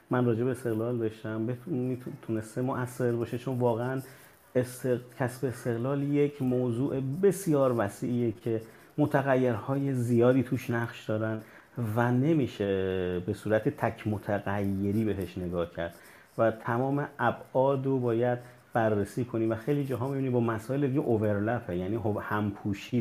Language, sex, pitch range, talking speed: Persian, male, 105-130 Hz, 130 wpm